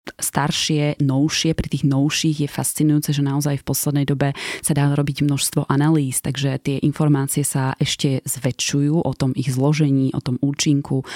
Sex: female